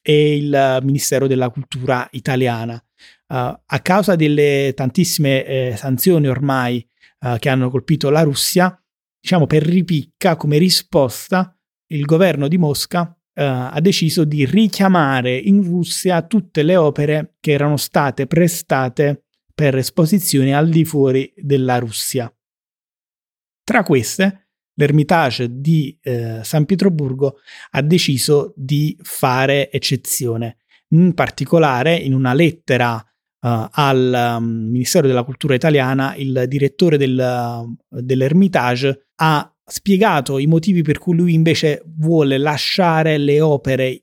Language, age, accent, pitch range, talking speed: Italian, 30-49, native, 130-165 Hz, 120 wpm